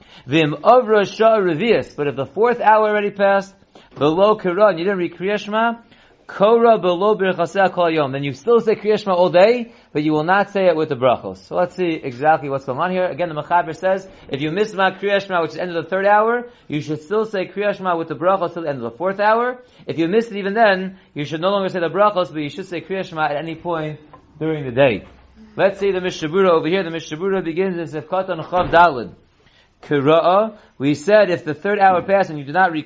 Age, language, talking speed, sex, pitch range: 30-49, English, 230 wpm, male, 160-205 Hz